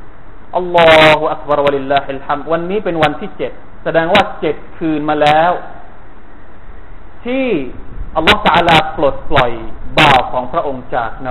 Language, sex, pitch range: Thai, male, 140-190 Hz